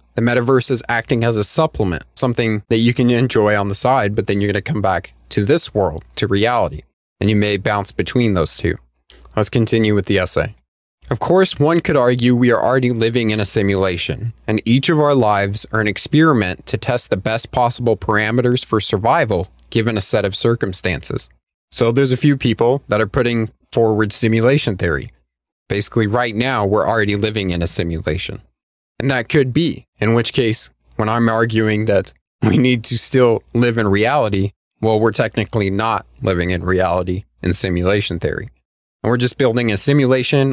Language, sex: English, male